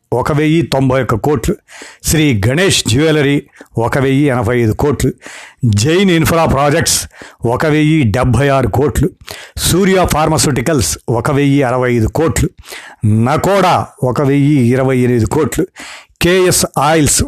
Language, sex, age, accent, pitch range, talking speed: Telugu, male, 50-69, native, 125-155 Hz, 125 wpm